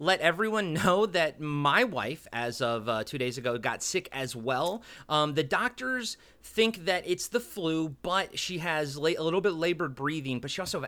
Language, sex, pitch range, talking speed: English, male, 125-165 Hz, 195 wpm